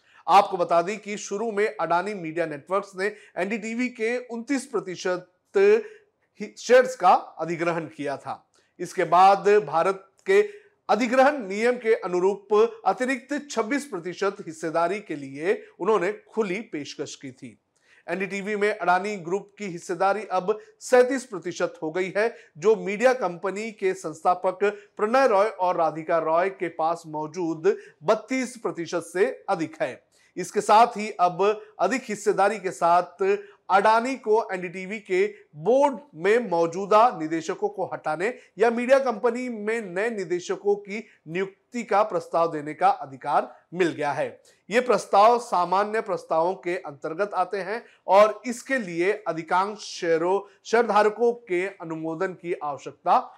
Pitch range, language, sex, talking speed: 175-230 Hz, Hindi, male, 135 wpm